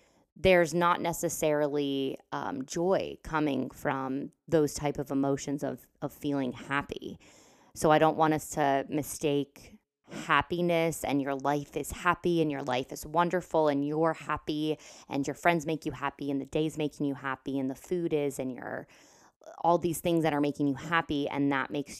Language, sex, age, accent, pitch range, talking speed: English, female, 20-39, American, 140-170 Hz, 175 wpm